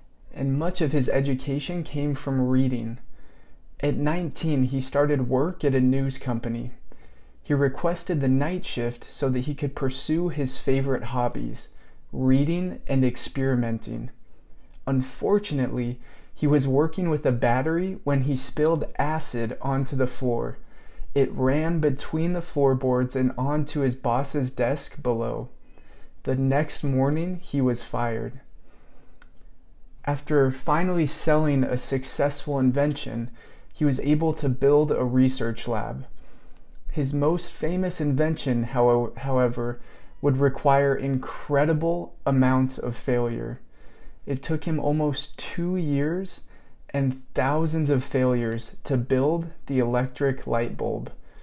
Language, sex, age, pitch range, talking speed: English, male, 20-39, 125-150 Hz, 125 wpm